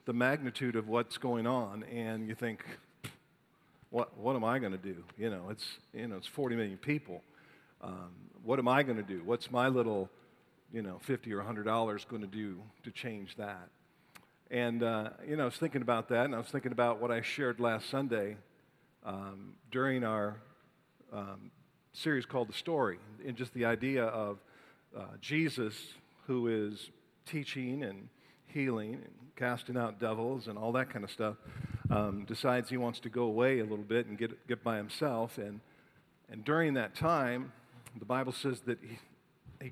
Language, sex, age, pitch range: English, male, 50-69, 110-130 Hz